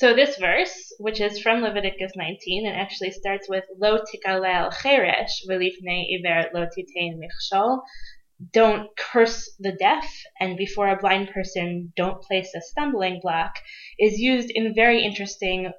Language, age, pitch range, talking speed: English, 20-39, 185-225 Hz, 120 wpm